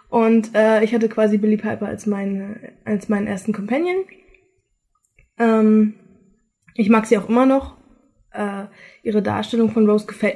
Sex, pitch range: female, 205-245 Hz